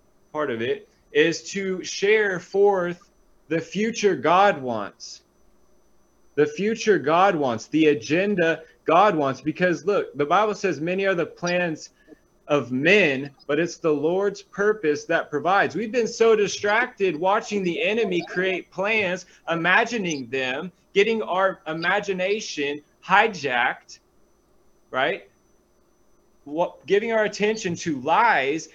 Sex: male